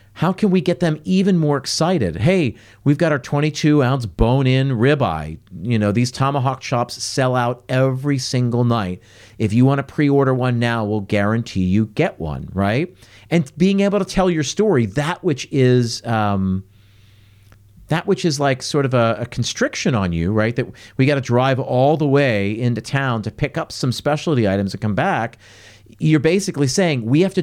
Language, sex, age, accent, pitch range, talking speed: English, male, 50-69, American, 110-165 Hz, 185 wpm